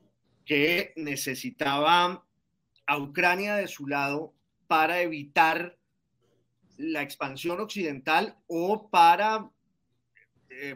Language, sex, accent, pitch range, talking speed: Spanish, male, Colombian, 140-175 Hz, 85 wpm